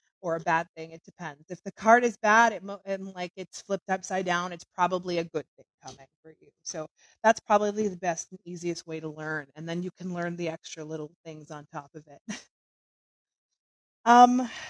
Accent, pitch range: American, 165-200 Hz